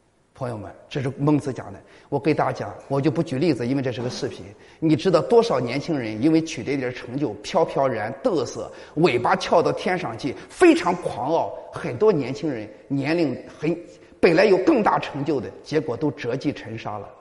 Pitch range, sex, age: 125-170 Hz, male, 30-49